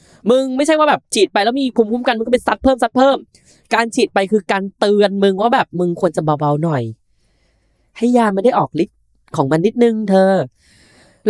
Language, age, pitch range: Thai, 10-29, 150-245 Hz